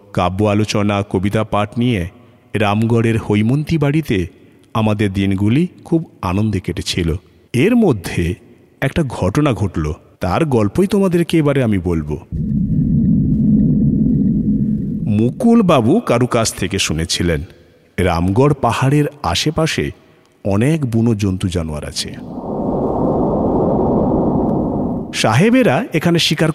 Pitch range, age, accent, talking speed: 95-140 Hz, 50-69, native, 90 wpm